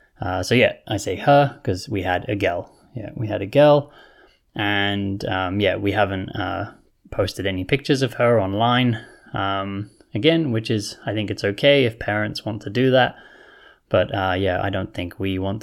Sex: male